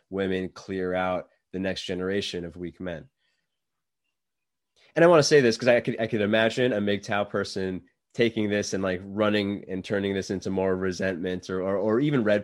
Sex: male